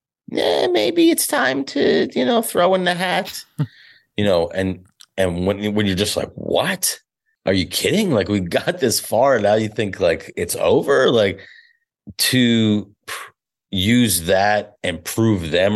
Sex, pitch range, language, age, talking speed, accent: male, 85-105 Hz, English, 30-49, 165 wpm, American